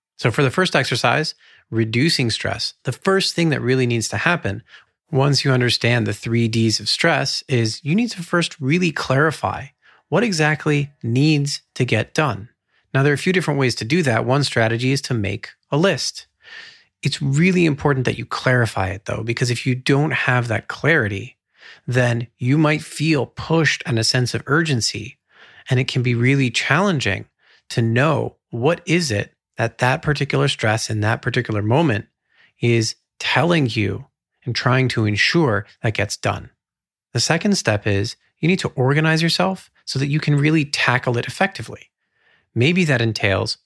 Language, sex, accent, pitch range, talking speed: English, male, American, 115-150 Hz, 175 wpm